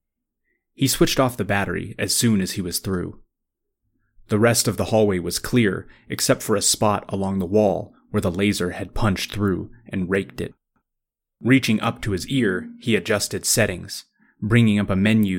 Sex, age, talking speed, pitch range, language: male, 30-49, 180 wpm, 95-110 Hz, English